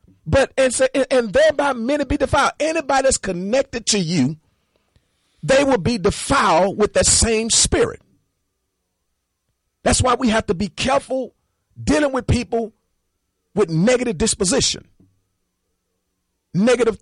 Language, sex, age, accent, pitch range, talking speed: English, male, 40-59, American, 185-295 Hz, 125 wpm